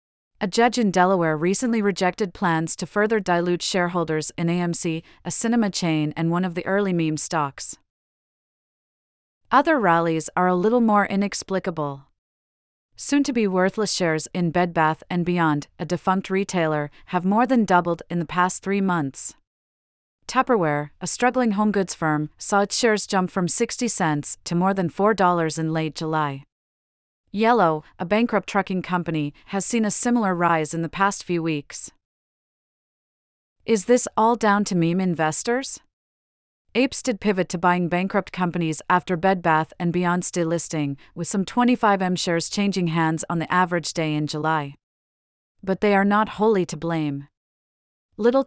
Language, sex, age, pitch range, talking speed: English, female, 30-49, 160-200 Hz, 155 wpm